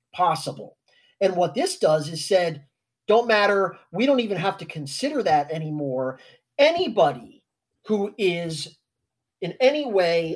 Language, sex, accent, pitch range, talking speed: English, male, American, 150-200 Hz, 135 wpm